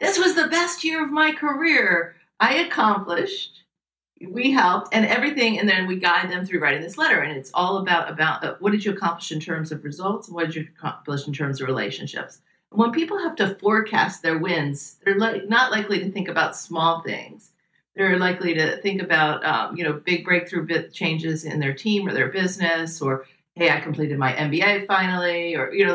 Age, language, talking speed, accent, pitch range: 40-59, English, 210 wpm, American, 160-205 Hz